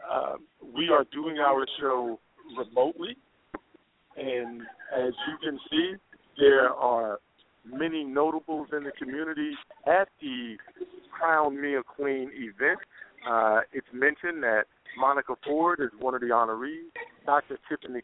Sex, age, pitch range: male, 50-69, 130-165 Hz